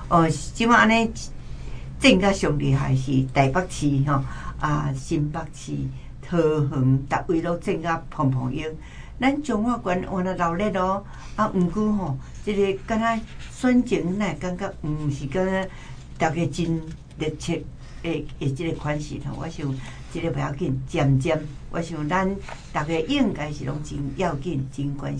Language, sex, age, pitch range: Chinese, female, 60-79, 135-185 Hz